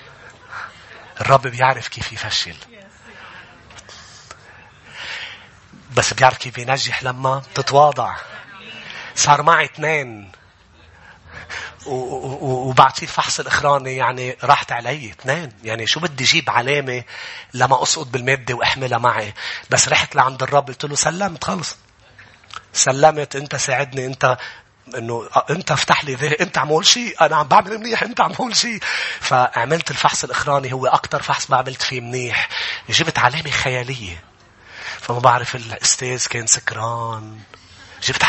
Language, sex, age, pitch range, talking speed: English, male, 30-49, 125-165 Hz, 120 wpm